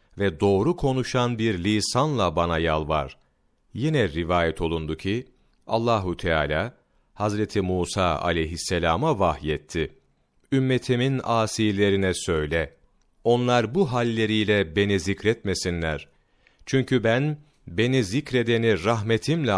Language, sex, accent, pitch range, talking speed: Turkish, male, native, 95-125 Hz, 90 wpm